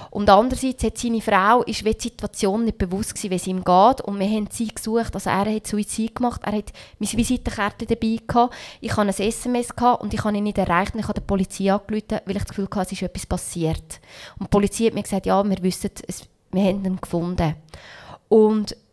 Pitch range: 195-235 Hz